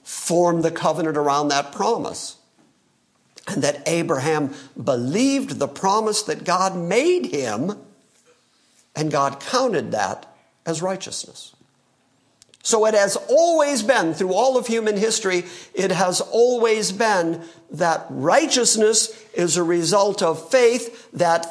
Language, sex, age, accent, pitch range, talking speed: English, male, 50-69, American, 150-210 Hz, 125 wpm